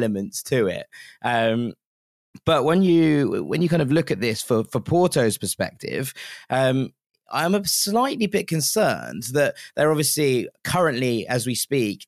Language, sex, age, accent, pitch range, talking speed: English, male, 20-39, British, 115-145 Hz, 155 wpm